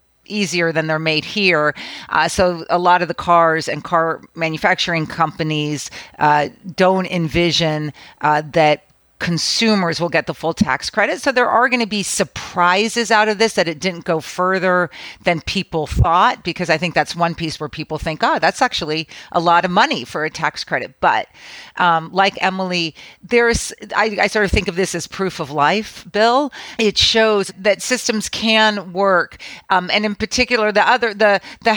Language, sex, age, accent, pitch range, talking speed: English, female, 40-59, American, 165-205 Hz, 180 wpm